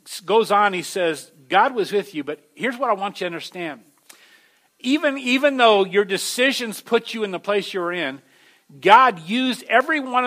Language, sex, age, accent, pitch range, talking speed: English, male, 50-69, American, 150-200 Hz, 195 wpm